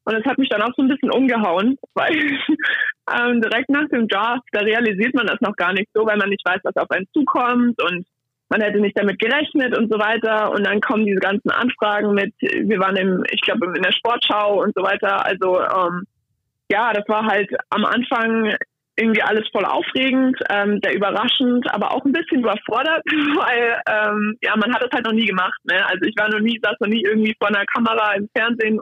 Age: 20-39